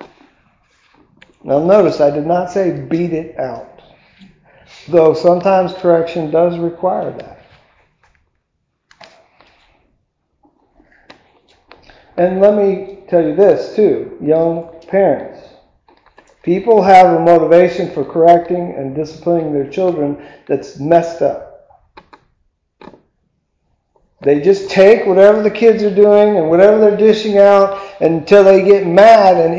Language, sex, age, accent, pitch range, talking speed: English, male, 50-69, American, 155-195 Hz, 110 wpm